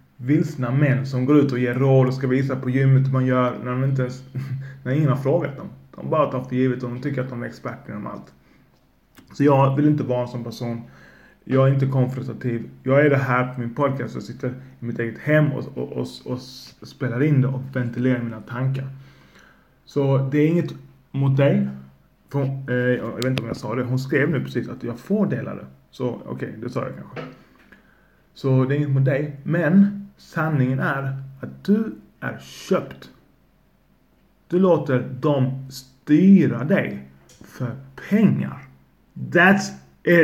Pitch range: 125-155 Hz